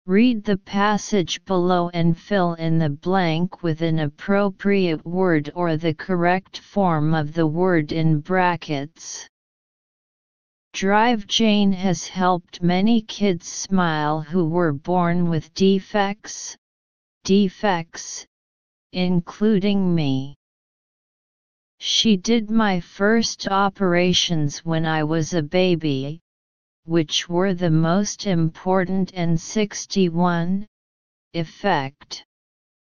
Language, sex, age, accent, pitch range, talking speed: English, female, 40-59, American, 160-200 Hz, 100 wpm